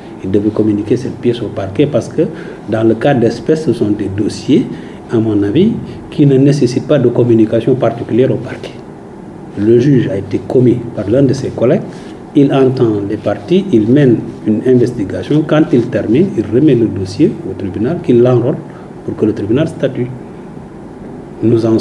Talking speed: 180 wpm